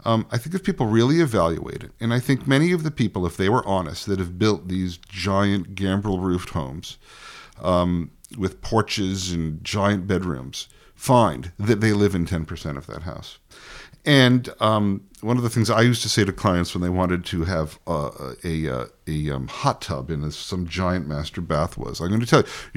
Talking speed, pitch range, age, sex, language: 200 wpm, 90-125 Hz, 50-69, male, English